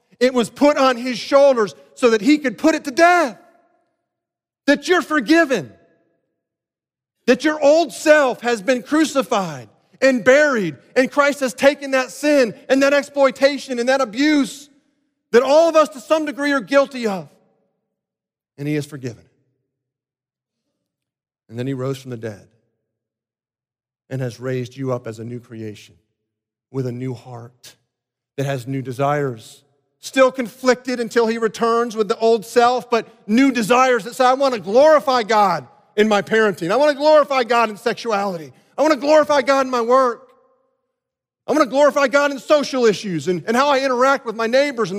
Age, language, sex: 40-59, English, male